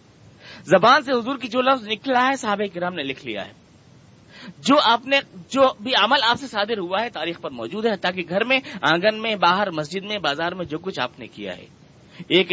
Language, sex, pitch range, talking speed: Urdu, male, 135-200 Hz, 215 wpm